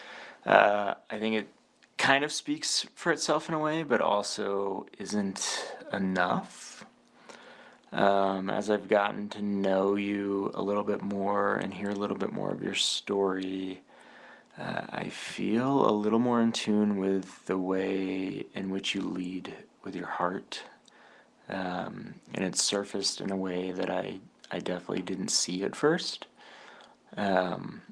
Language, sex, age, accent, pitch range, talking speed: English, male, 20-39, American, 95-110 Hz, 150 wpm